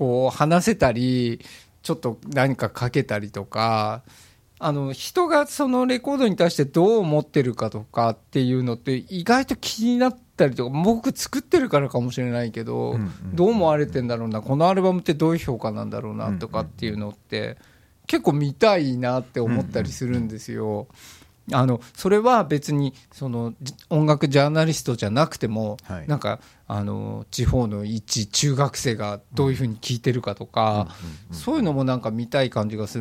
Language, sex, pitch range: Japanese, male, 110-160 Hz